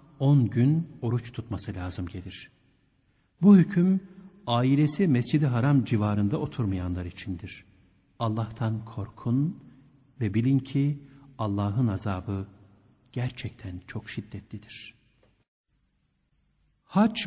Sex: male